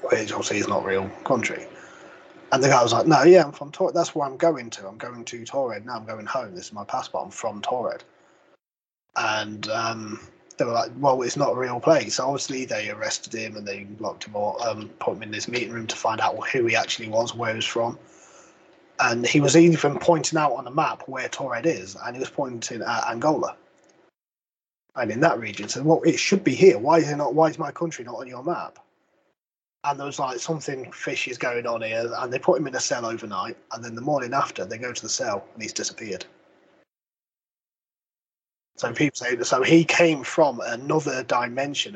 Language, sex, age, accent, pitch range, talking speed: English, male, 20-39, British, 115-160 Hz, 225 wpm